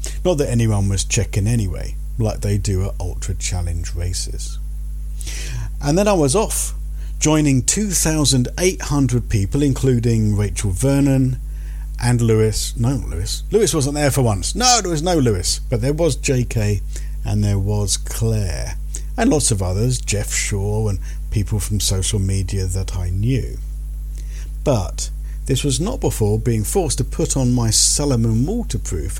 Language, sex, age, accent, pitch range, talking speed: English, male, 50-69, British, 75-125 Hz, 150 wpm